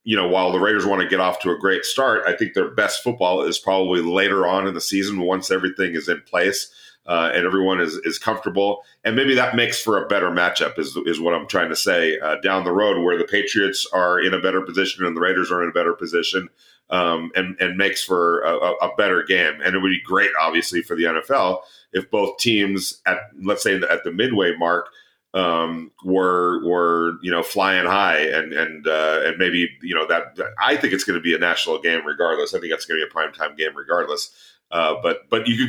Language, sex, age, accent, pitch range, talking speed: English, male, 40-59, American, 90-125 Hz, 235 wpm